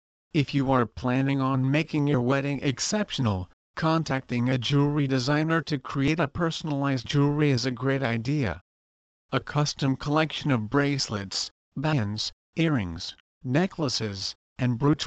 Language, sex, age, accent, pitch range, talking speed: English, male, 50-69, American, 120-150 Hz, 125 wpm